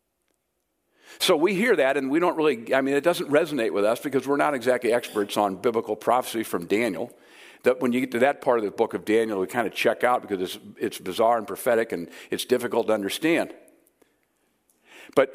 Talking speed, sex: 210 wpm, male